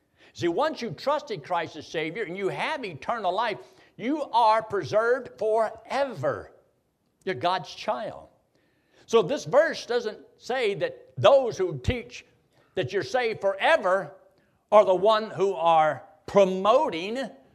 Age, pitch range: 60-79, 160-235 Hz